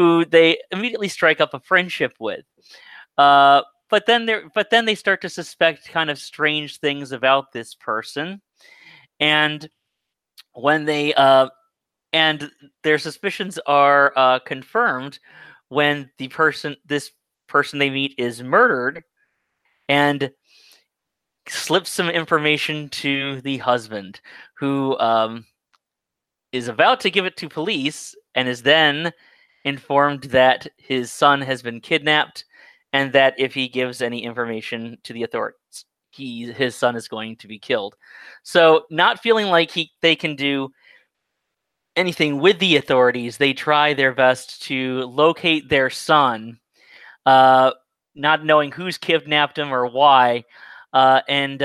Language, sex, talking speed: English, male, 135 wpm